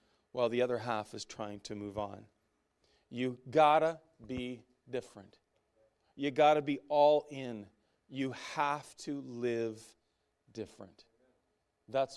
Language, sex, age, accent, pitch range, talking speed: English, male, 40-59, American, 110-140 Hz, 130 wpm